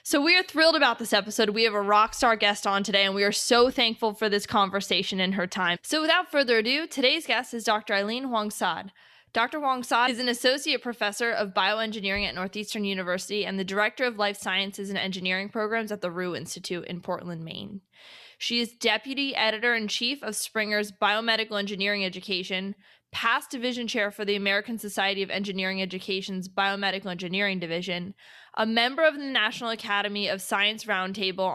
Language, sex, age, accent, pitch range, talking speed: English, female, 20-39, American, 195-235 Hz, 185 wpm